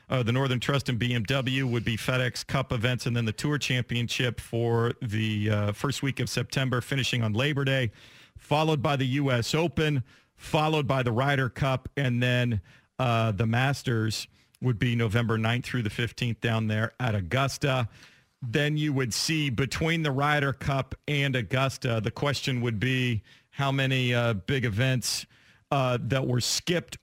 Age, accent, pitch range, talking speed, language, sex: 50-69, American, 115-135 Hz, 170 wpm, English, male